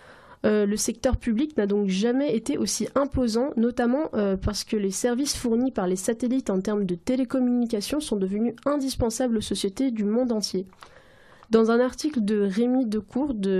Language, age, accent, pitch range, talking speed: French, 20-39, French, 205-250 Hz, 170 wpm